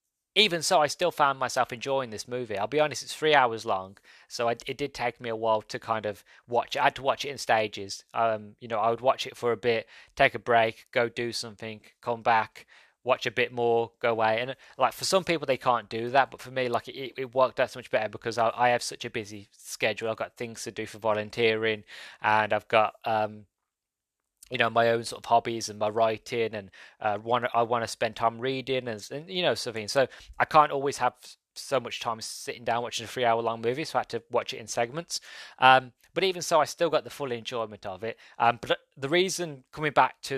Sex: male